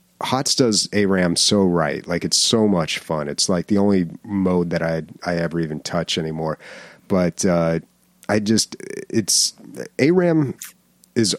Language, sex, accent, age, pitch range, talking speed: English, male, American, 30-49, 85-105 Hz, 155 wpm